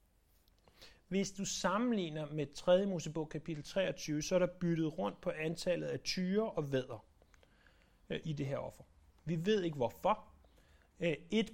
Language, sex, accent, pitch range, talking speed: Danish, male, native, 125-175 Hz, 145 wpm